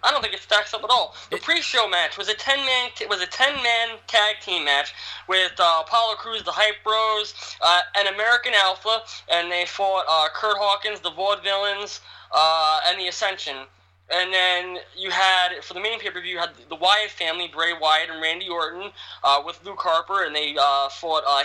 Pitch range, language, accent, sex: 160-220 Hz, English, American, male